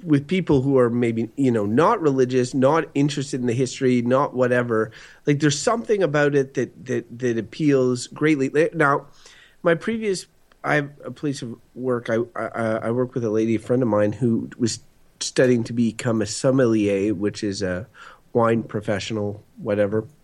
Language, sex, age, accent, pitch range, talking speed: English, male, 30-49, American, 110-135 Hz, 170 wpm